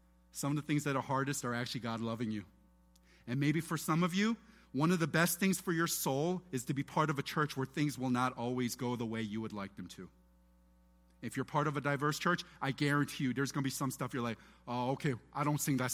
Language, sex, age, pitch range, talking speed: English, male, 40-59, 115-185 Hz, 265 wpm